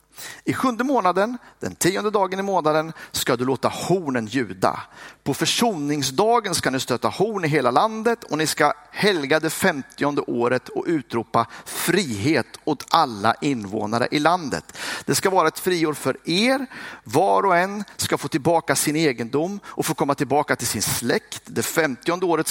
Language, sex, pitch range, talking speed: Swedish, male, 135-190 Hz, 165 wpm